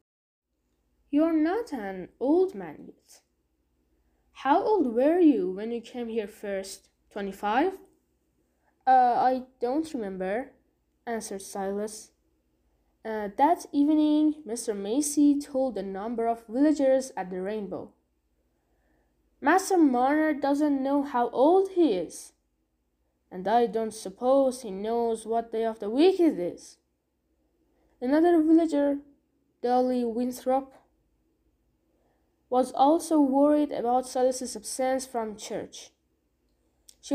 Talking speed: 115 wpm